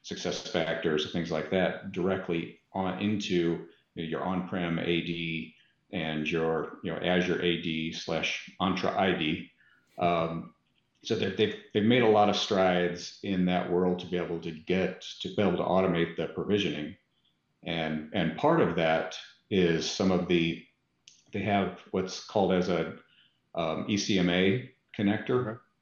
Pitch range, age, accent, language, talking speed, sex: 85-95 Hz, 50-69, American, English, 145 wpm, male